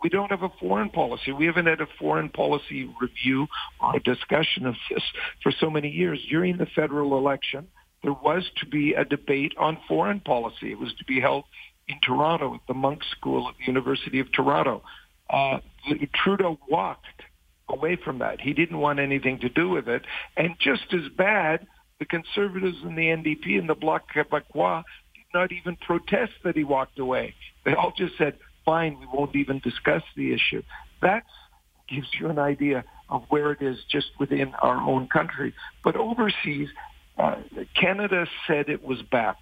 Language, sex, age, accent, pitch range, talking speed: English, male, 50-69, American, 135-165 Hz, 180 wpm